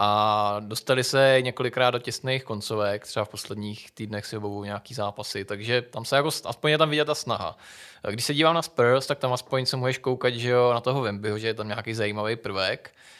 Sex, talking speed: male, 215 wpm